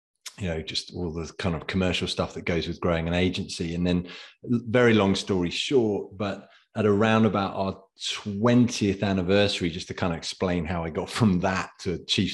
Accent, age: British, 30-49